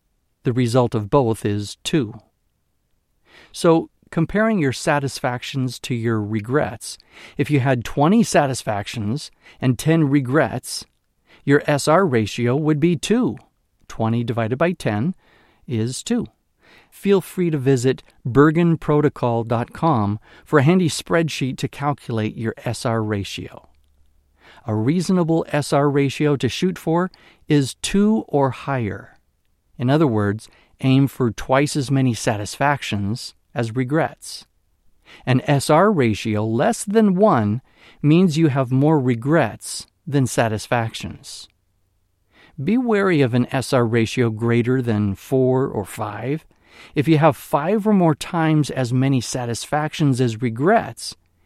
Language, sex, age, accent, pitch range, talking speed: English, male, 50-69, American, 115-155 Hz, 120 wpm